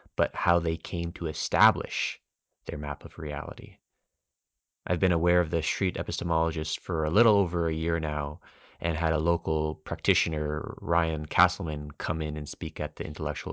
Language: English